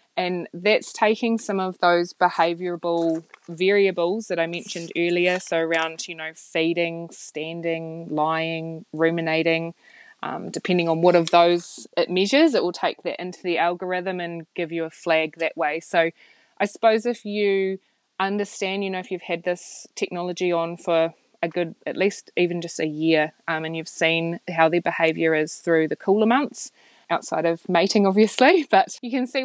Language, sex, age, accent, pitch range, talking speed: English, female, 20-39, Australian, 165-195 Hz, 175 wpm